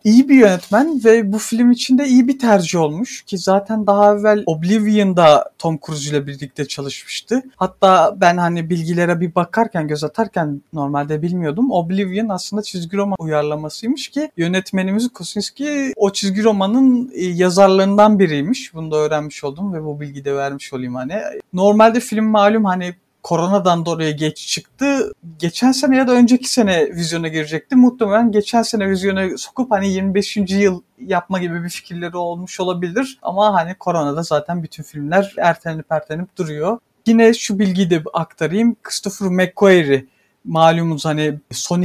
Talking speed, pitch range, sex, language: 150 wpm, 165-220 Hz, male, Turkish